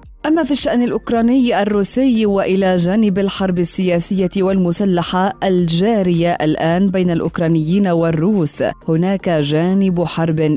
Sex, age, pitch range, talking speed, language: female, 20-39, 165-215 Hz, 100 wpm, Arabic